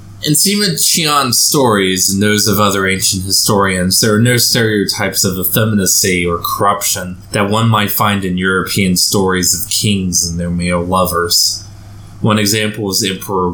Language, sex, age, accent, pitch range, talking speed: English, male, 20-39, American, 95-110 Hz, 155 wpm